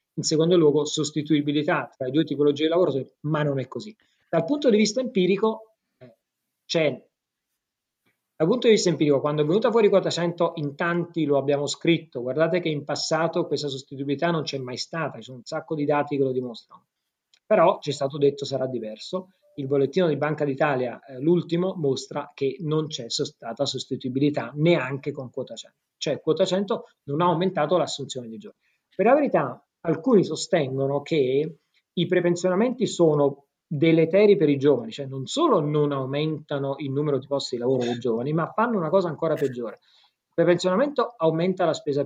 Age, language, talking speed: 30-49, Italian, 175 wpm